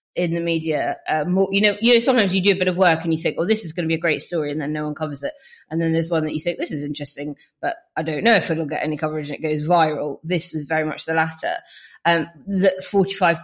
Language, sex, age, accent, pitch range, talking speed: English, female, 20-39, British, 155-180 Hz, 295 wpm